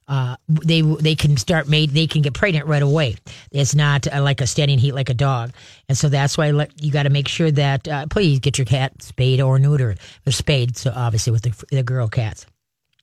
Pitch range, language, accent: 135-155 Hz, English, American